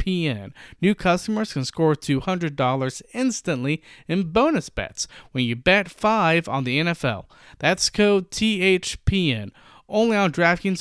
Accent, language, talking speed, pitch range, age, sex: American, English, 120 wpm, 130-180 Hz, 40-59, male